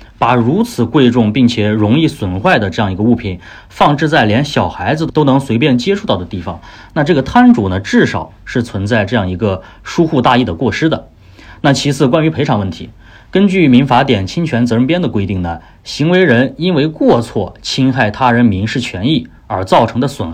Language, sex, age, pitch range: Chinese, male, 30-49, 100-145 Hz